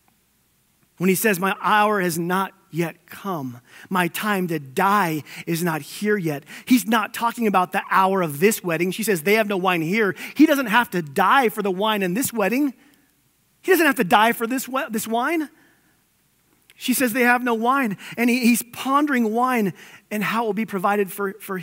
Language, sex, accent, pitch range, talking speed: English, male, American, 175-225 Hz, 195 wpm